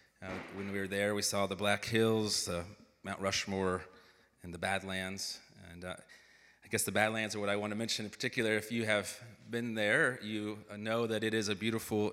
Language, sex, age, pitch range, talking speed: English, male, 30-49, 100-115 Hz, 205 wpm